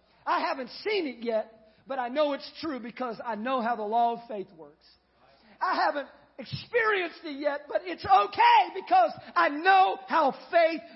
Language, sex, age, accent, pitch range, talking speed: English, male, 40-59, American, 265-350 Hz, 175 wpm